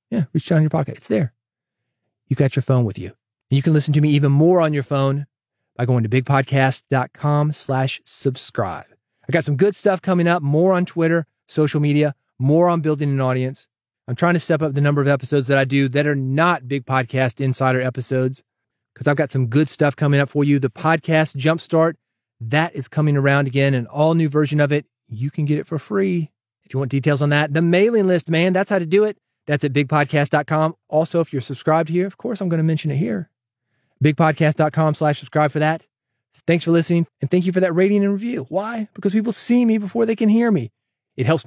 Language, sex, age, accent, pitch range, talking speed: English, male, 30-49, American, 130-160 Hz, 225 wpm